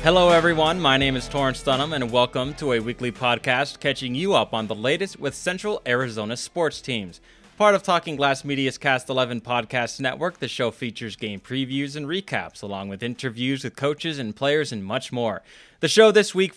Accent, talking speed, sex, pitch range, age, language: American, 195 wpm, male, 120-170 Hz, 20-39, English